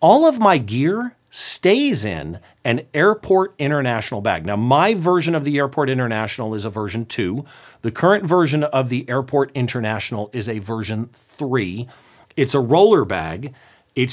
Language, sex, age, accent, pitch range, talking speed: English, male, 40-59, American, 120-170 Hz, 155 wpm